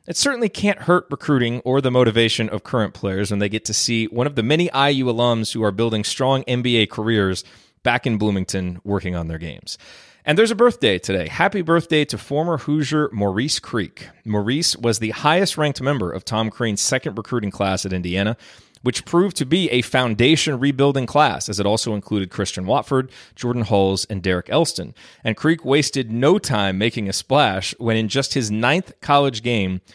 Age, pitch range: 30-49, 100-135 Hz